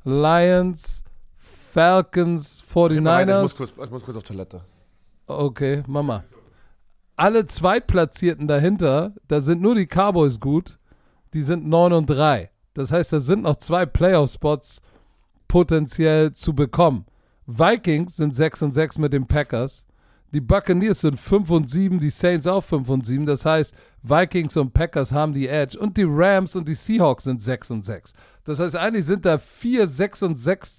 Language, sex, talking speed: German, male, 160 wpm